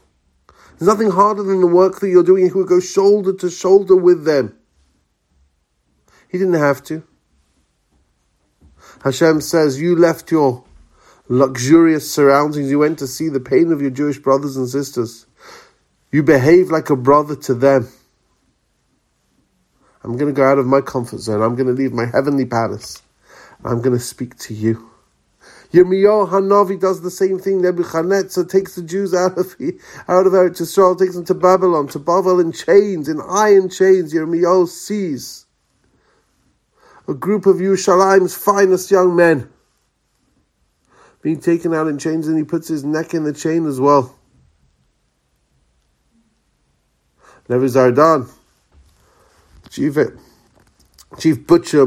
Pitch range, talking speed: 130-185 Hz, 145 wpm